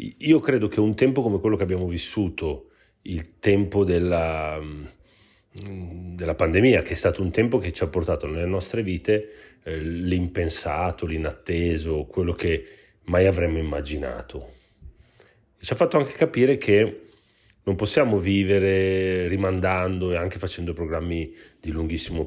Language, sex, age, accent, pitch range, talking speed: Italian, male, 30-49, native, 80-105 Hz, 135 wpm